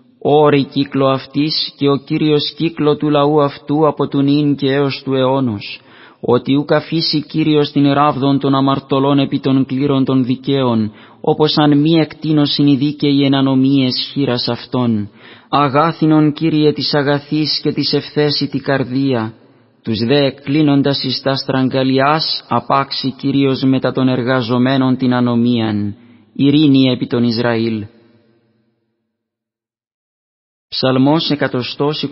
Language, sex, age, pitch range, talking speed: Greek, male, 30-49, 130-145 Hz, 120 wpm